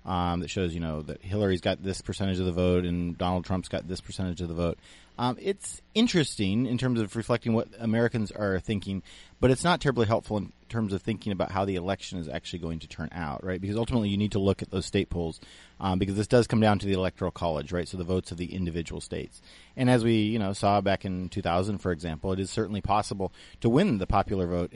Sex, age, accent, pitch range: male, 30-49, American, 90-115 Hz